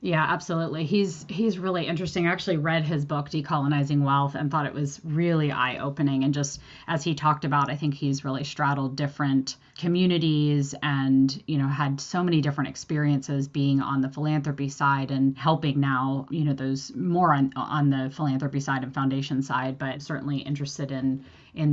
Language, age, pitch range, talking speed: English, 30-49, 140-160 Hz, 180 wpm